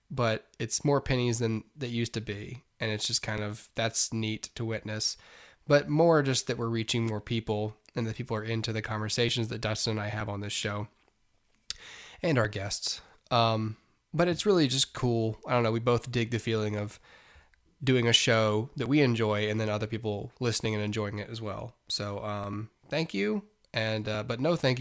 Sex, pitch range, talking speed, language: male, 110-135 Hz, 205 wpm, English